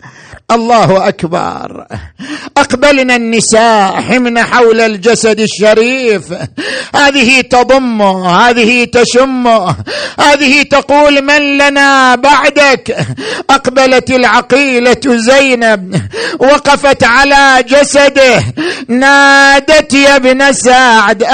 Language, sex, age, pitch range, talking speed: Arabic, male, 50-69, 255-295 Hz, 75 wpm